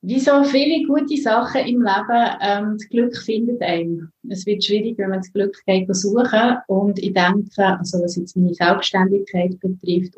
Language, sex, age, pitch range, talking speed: German, female, 30-49, 185-220 Hz, 175 wpm